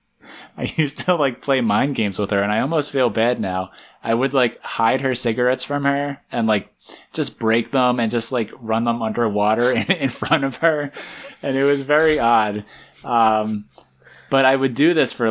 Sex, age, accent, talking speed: male, 20-39, American, 200 wpm